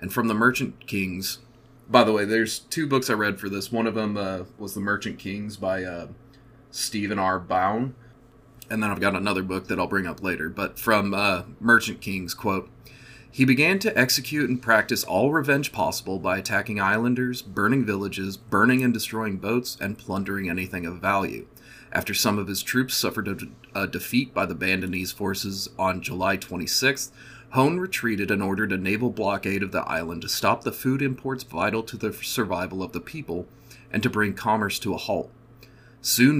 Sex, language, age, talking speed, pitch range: male, English, 30-49, 190 wpm, 100-125 Hz